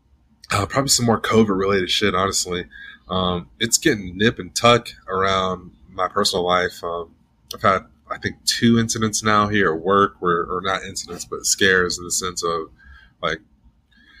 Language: English